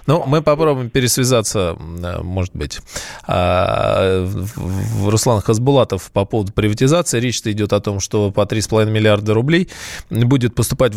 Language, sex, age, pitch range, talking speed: Russian, male, 20-39, 100-130 Hz, 140 wpm